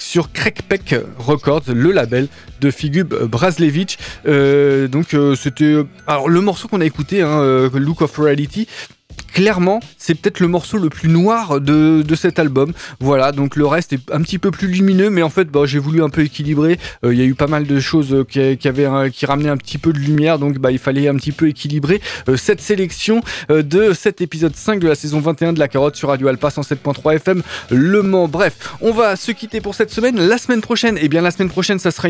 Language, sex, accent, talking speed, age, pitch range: French, male, French, 225 wpm, 20-39, 140-180 Hz